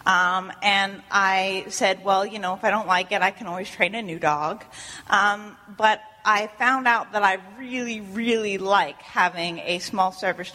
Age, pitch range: 30-49, 195-235 Hz